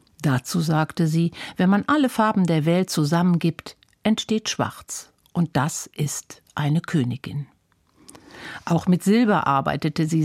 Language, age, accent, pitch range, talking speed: German, 50-69, German, 155-195 Hz, 130 wpm